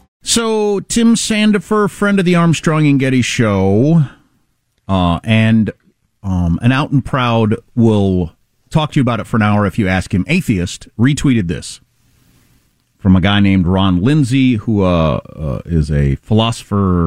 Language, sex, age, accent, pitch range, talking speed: English, male, 40-59, American, 95-140 Hz, 160 wpm